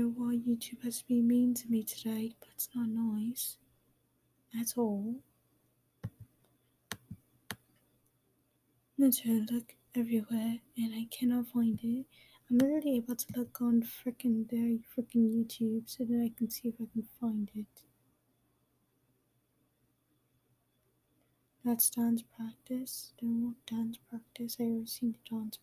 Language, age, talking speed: English, 10-29, 130 wpm